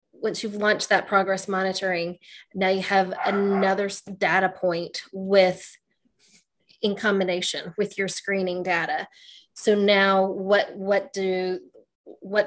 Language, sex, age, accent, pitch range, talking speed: English, female, 20-39, American, 185-215 Hz, 120 wpm